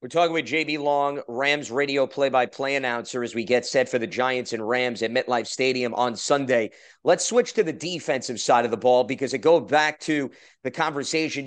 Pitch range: 135-165 Hz